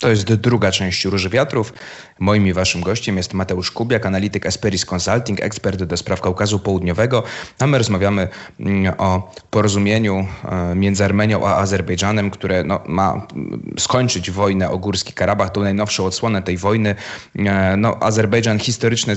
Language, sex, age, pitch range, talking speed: Polish, male, 30-49, 95-110 Hz, 145 wpm